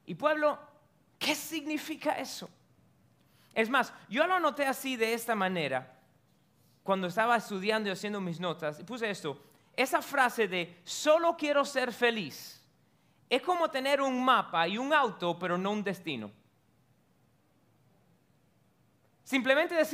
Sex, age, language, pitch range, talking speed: male, 30-49, Spanish, 205-285 Hz, 130 wpm